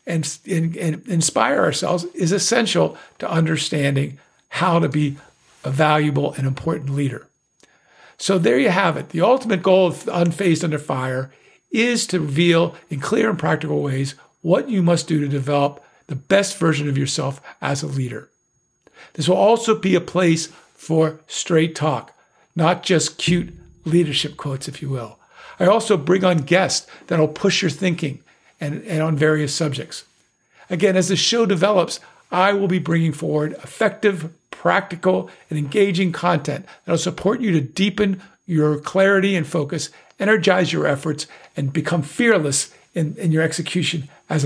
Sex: male